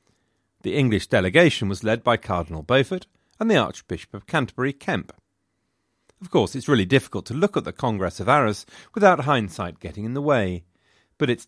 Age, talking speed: 40-59, 180 wpm